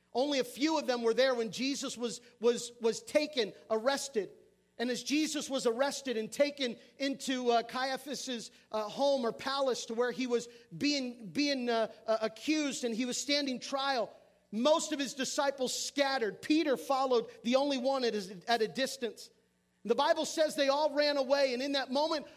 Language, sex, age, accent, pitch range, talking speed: English, male, 40-59, American, 210-275 Hz, 185 wpm